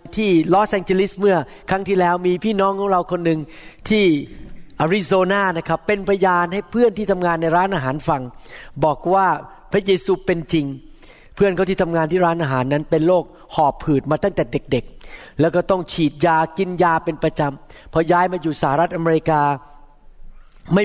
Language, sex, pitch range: Thai, male, 160-200 Hz